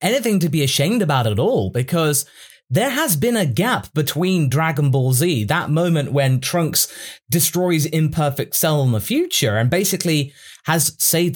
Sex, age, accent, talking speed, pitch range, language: male, 20-39, British, 165 wpm, 140-195 Hz, English